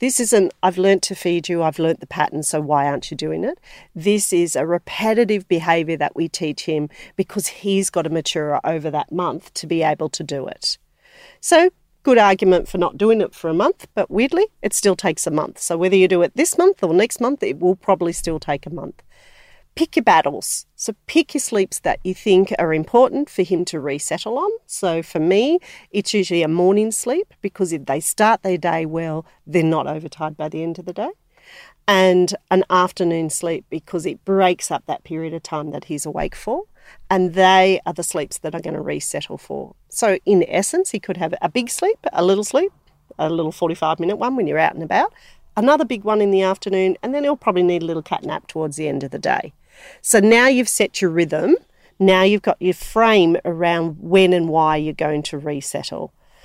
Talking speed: 215 wpm